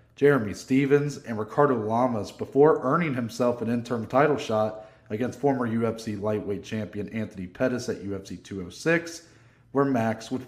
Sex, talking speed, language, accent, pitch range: male, 145 wpm, English, American, 110-135 Hz